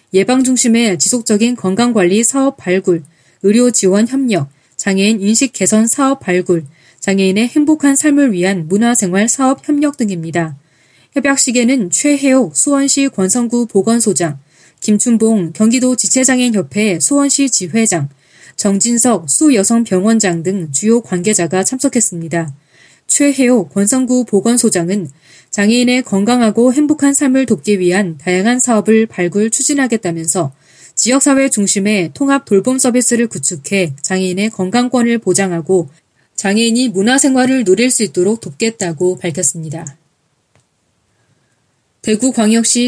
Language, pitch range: Korean, 175-245 Hz